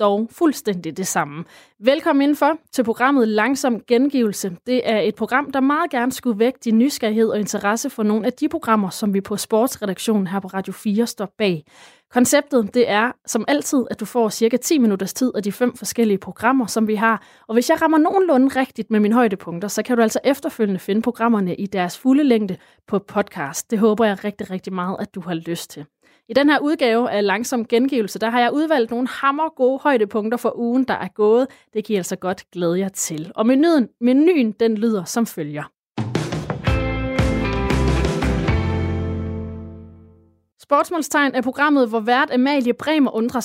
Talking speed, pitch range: 185 wpm, 195-250 Hz